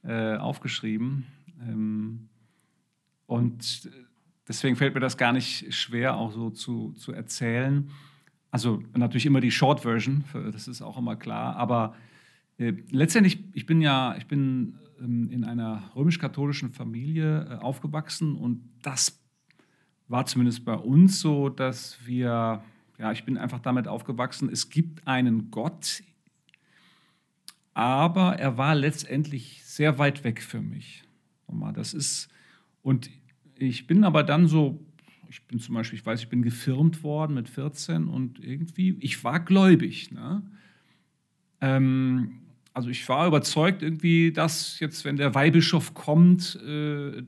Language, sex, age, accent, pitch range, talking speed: German, male, 40-59, German, 120-160 Hz, 130 wpm